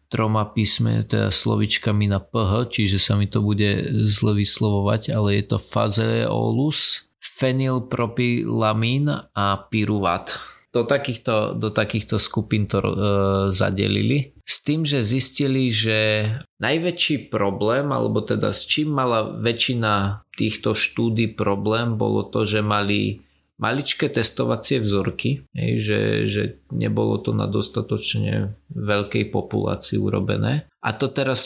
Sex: male